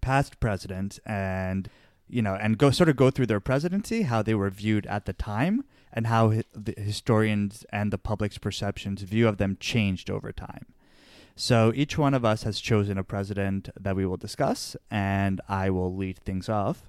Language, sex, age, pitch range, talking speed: English, male, 20-39, 95-115 Hz, 190 wpm